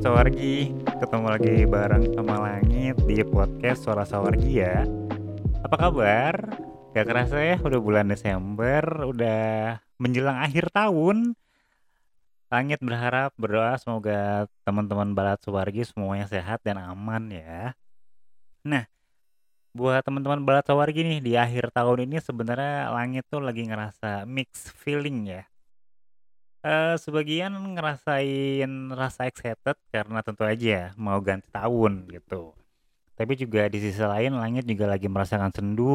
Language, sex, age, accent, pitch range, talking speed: Indonesian, male, 30-49, native, 100-130 Hz, 125 wpm